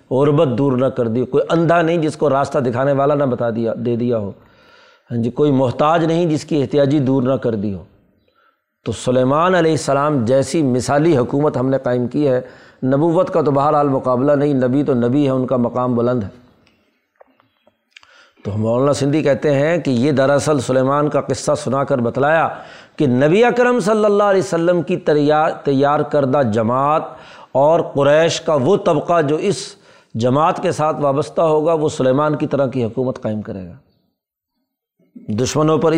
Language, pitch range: Urdu, 130-160 Hz